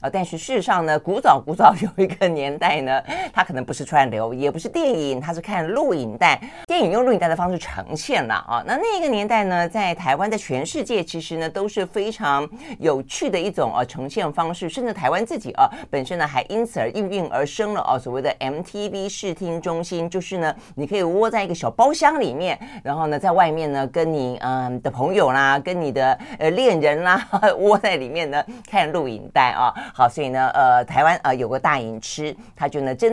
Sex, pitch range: female, 140-200 Hz